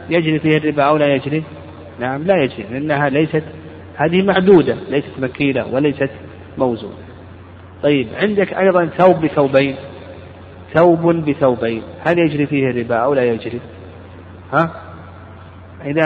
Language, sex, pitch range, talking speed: Arabic, male, 100-150 Hz, 125 wpm